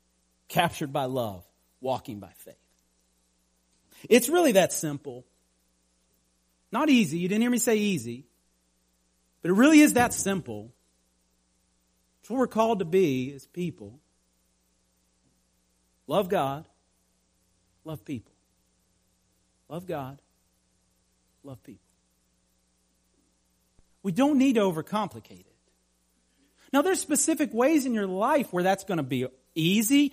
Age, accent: 40-59, American